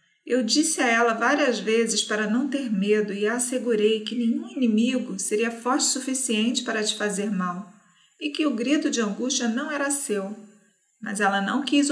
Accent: Brazilian